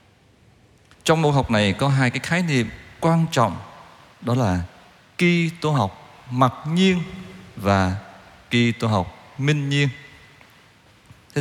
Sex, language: male, Vietnamese